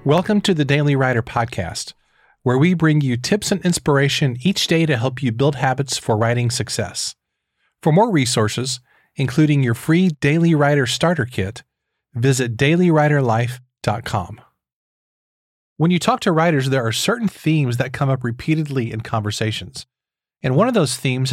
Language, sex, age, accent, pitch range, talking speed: English, male, 40-59, American, 125-165 Hz, 155 wpm